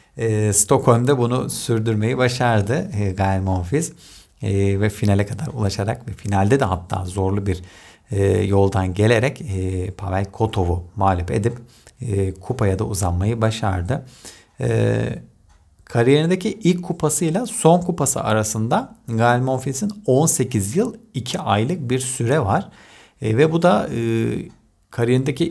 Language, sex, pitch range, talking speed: Turkish, male, 100-135 Hz, 125 wpm